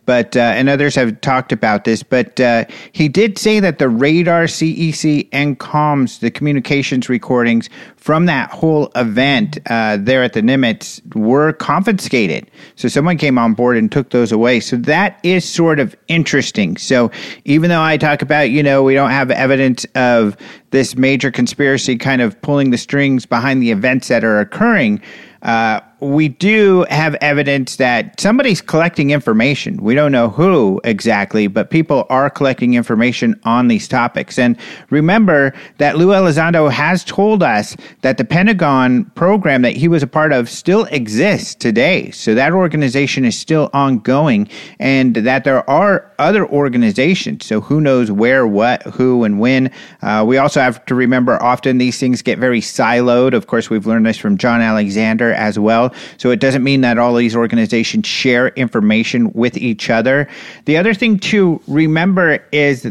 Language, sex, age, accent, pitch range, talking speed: English, male, 50-69, American, 125-160 Hz, 170 wpm